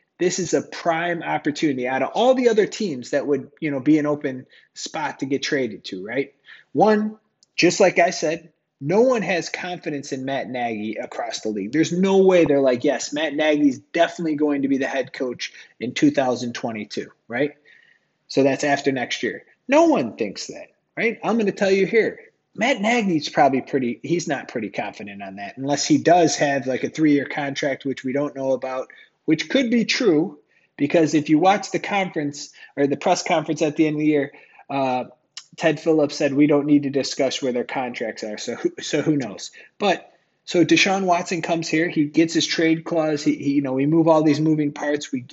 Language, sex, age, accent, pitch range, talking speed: English, male, 30-49, American, 140-185 Hz, 205 wpm